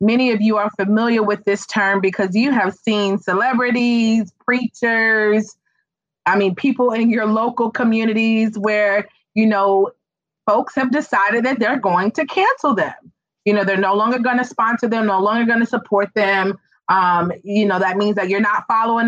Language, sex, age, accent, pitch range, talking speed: English, female, 30-49, American, 195-225 Hz, 180 wpm